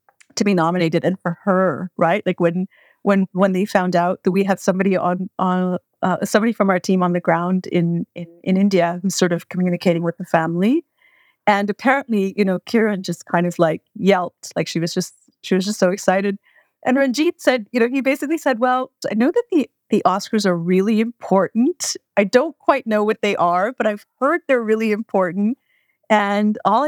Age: 30-49